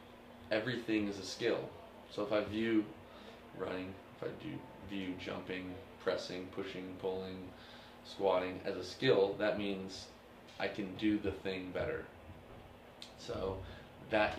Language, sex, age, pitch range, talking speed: English, male, 20-39, 90-110 Hz, 130 wpm